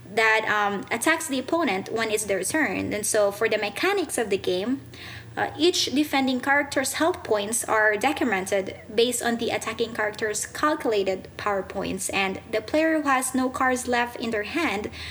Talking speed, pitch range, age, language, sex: 175 wpm, 210-250 Hz, 20-39, English, female